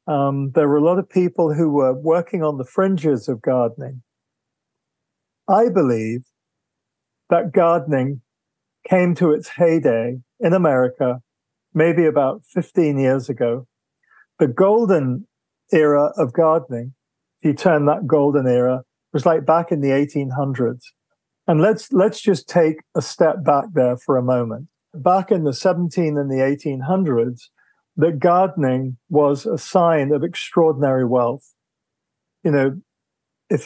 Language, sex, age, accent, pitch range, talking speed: English, male, 50-69, British, 135-180 Hz, 135 wpm